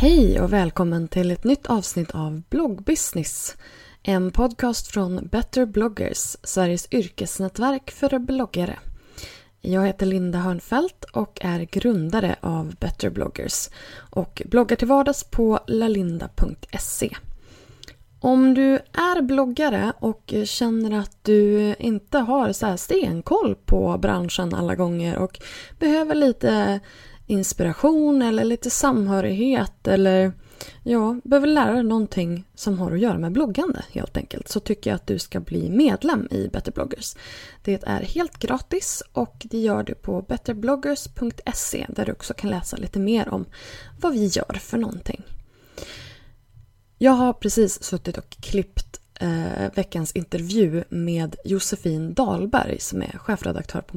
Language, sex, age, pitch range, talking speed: Swedish, female, 20-39, 180-250 Hz, 135 wpm